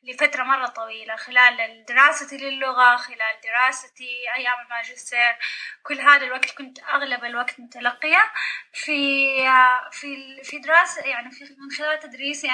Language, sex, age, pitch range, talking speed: Arabic, female, 10-29, 245-290 Hz, 120 wpm